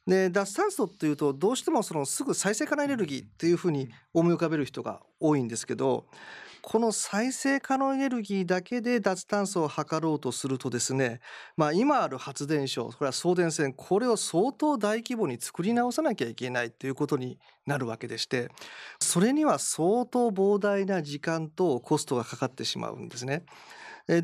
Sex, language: male, Japanese